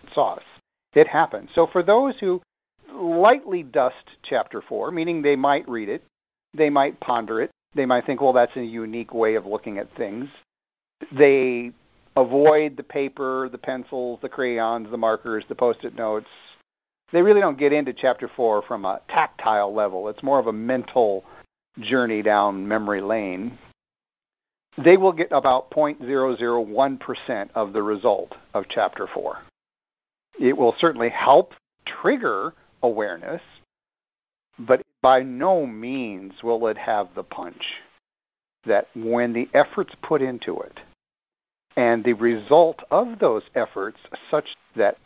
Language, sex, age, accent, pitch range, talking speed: English, male, 50-69, American, 115-150 Hz, 140 wpm